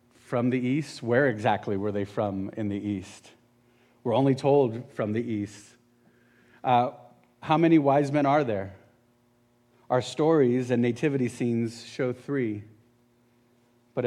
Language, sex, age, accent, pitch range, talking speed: English, male, 40-59, American, 110-125 Hz, 135 wpm